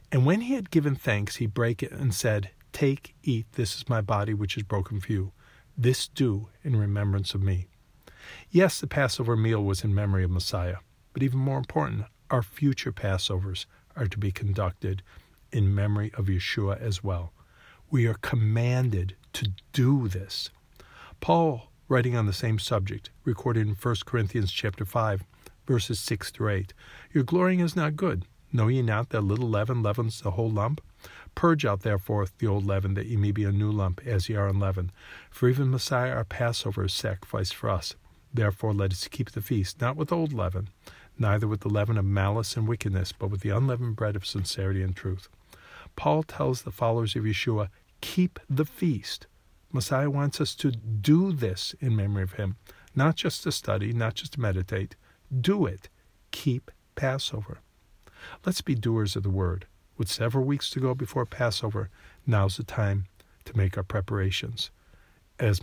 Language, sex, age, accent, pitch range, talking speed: English, male, 50-69, American, 95-125 Hz, 180 wpm